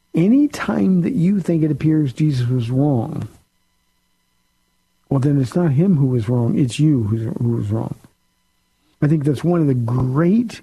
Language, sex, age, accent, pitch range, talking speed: English, male, 50-69, American, 125-150 Hz, 175 wpm